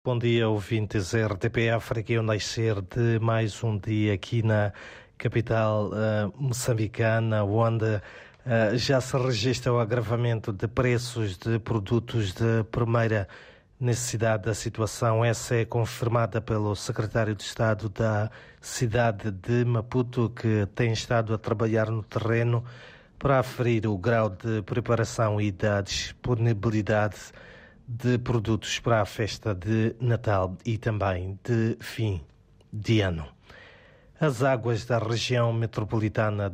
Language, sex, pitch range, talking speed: Portuguese, male, 110-120 Hz, 125 wpm